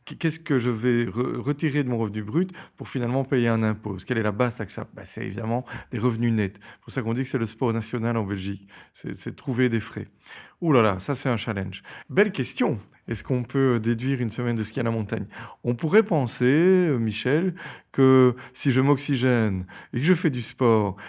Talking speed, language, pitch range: 220 wpm, French, 110-135 Hz